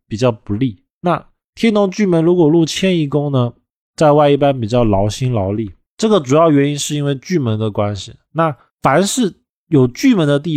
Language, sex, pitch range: Chinese, male, 110-160 Hz